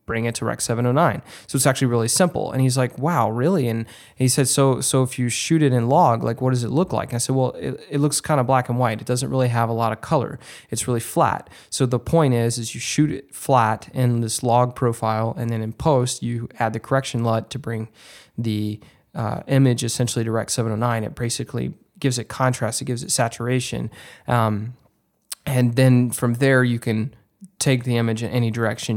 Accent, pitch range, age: American, 115-130 Hz, 20-39